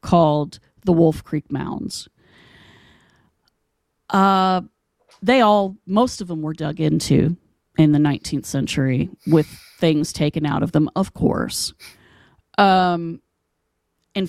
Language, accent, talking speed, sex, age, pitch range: English, American, 120 wpm, female, 30-49, 155-195 Hz